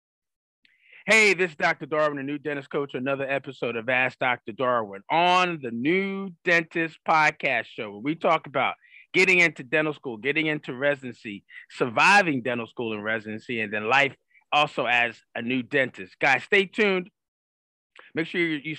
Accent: American